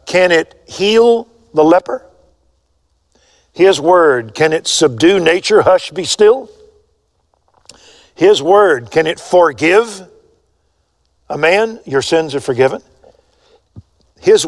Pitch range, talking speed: 125-205 Hz, 110 wpm